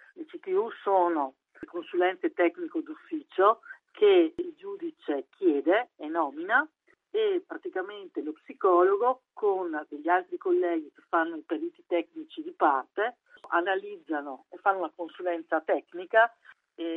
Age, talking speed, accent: 50-69, 125 wpm, native